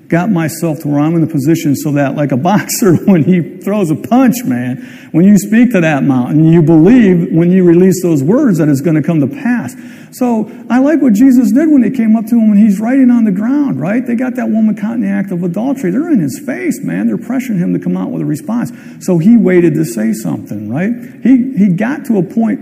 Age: 50-69